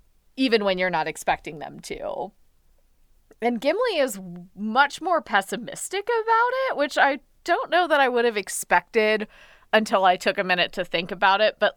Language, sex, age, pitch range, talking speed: English, female, 20-39, 175-235 Hz, 175 wpm